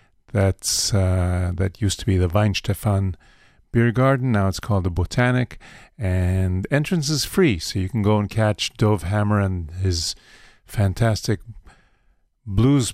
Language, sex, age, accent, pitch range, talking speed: English, male, 50-69, American, 95-110 Hz, 145 wpm